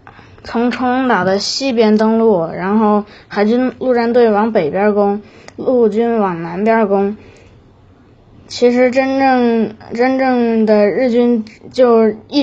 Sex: female